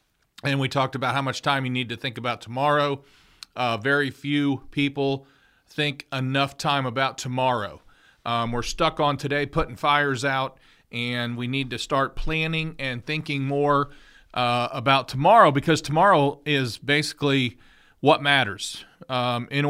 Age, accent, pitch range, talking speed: 40-59, American, 130-160 Hz, 150 wpm